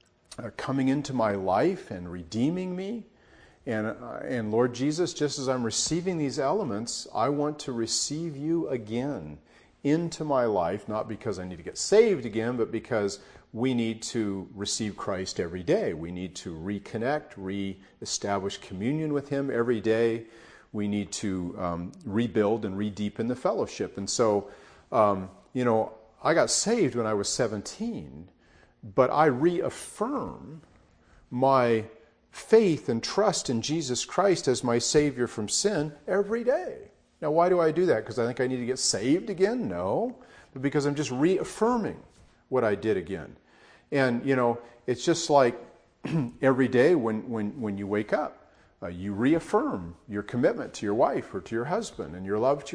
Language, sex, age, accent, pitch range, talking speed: English, male, 50-69, American, 105-150 Hz, 170 wpm